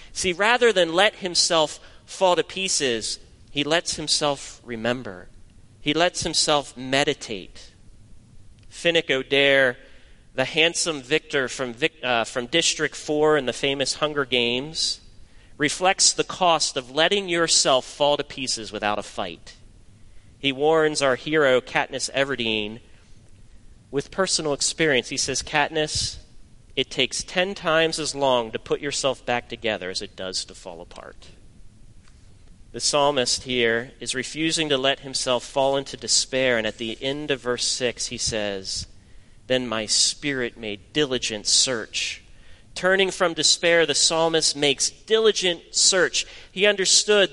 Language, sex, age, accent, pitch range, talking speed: English, male, 30-49, American, 115-165 Hz, 135 wpm